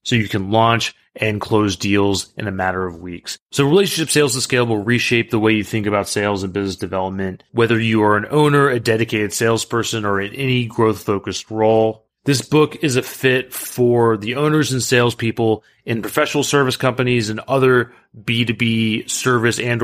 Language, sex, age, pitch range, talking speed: English, male, 30-49, 105-125 Hz, 180 wpm